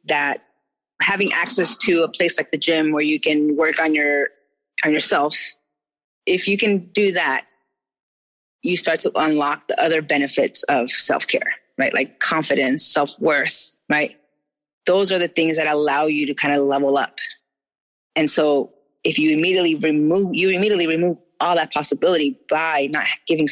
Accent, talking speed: American, 160 wpm